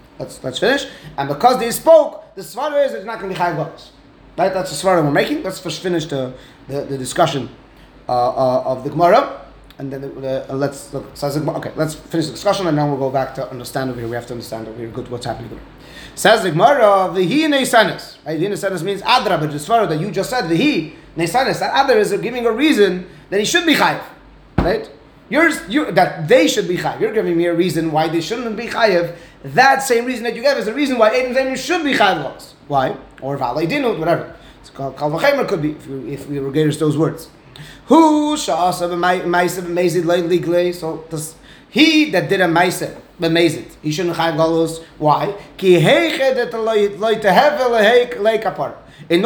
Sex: male